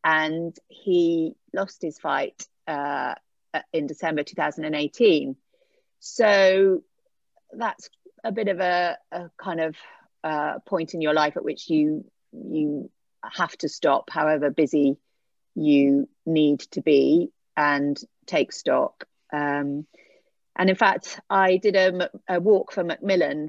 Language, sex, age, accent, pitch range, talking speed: English, female, 40-59, British, 155-185 Hz, 130 wpm